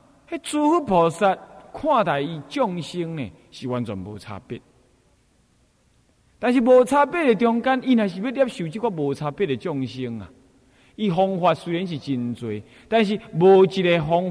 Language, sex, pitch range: Chinese, male, 130-220 Hz